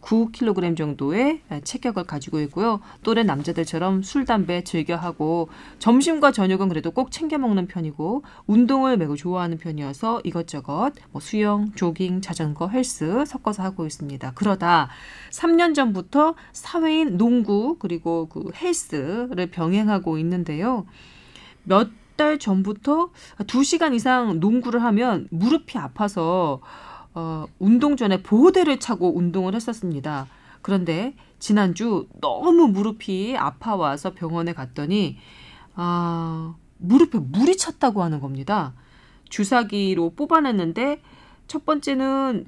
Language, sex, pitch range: Korean, female, 170-250 Hz